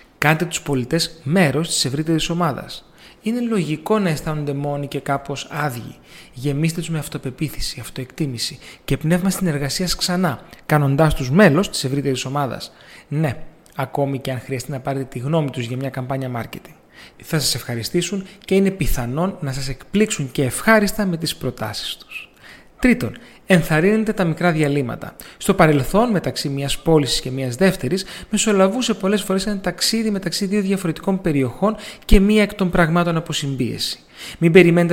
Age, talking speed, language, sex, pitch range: 30-49, 155 wpm, Greek, male, 140-185 Hz